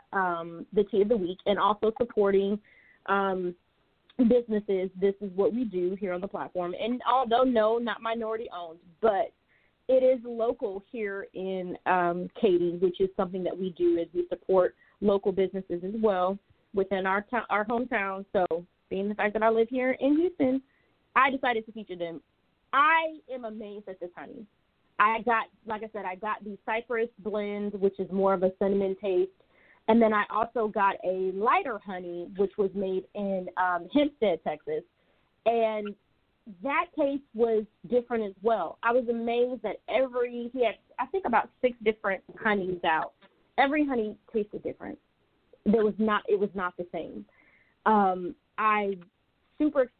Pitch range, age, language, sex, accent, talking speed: 190-235 Hz, 30-49, English, female, American, 170 wpm